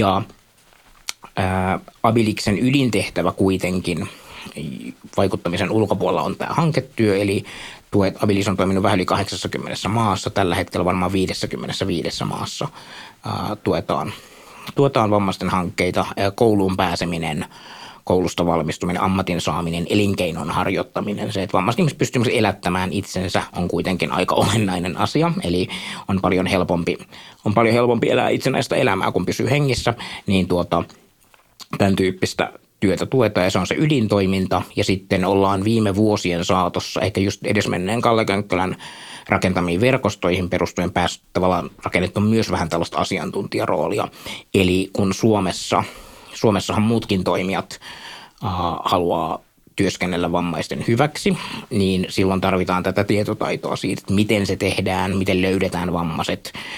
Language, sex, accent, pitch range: Finnish, male, native, 90-105 Hz